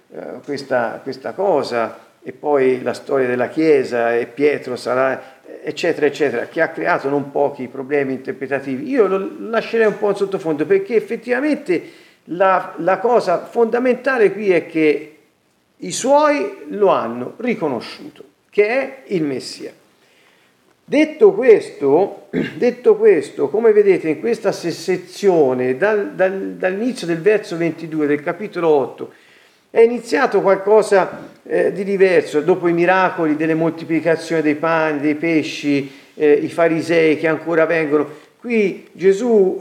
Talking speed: 130 wpm